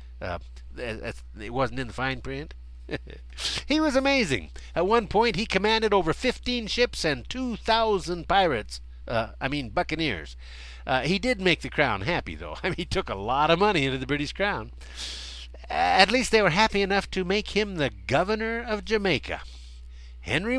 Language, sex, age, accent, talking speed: English, male, 60-79, American, 170 wpm